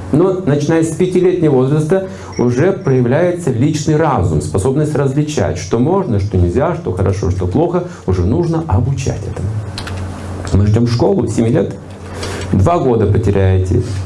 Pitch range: 95-130 Hz